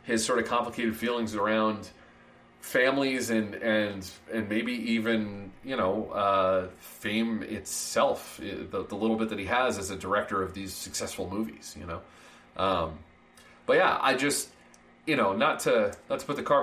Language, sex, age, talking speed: English, male, 30-49, 170 wpm